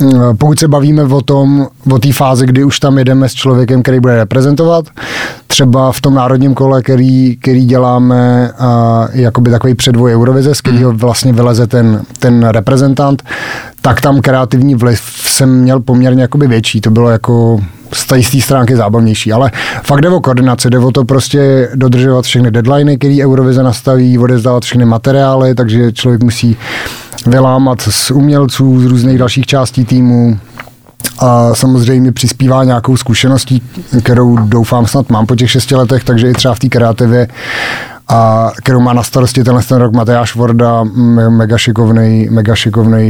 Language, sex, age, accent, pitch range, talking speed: Czech, male, 30-49, native, 120-130 Hz, 155 wpm